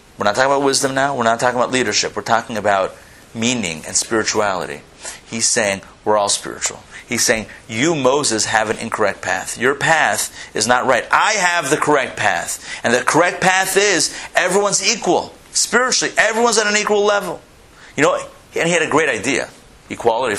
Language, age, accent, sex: English, 30-49, American, male